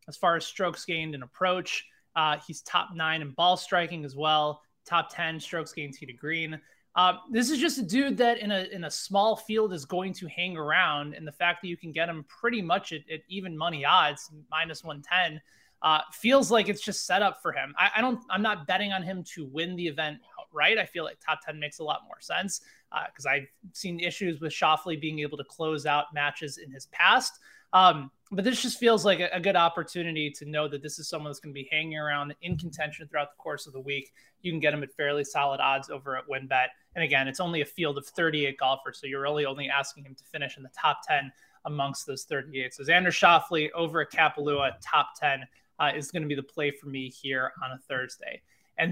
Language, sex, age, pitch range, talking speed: English, male, 20-39, 145-180 Hz, 235 wpm